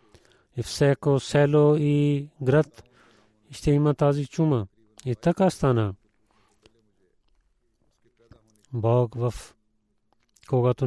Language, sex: Bulgarian, male